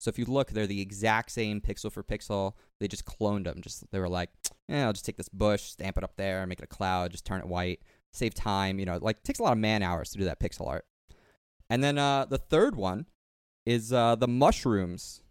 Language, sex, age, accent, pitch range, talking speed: English, male, 20-39, American, 95-115 Hz, 250 wpm